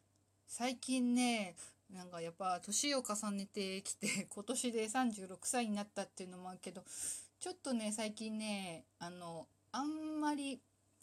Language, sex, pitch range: Japanese, female, 180-245 Hz